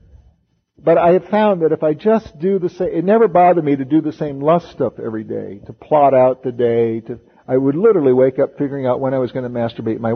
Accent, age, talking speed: American, 50-69, 255 wpm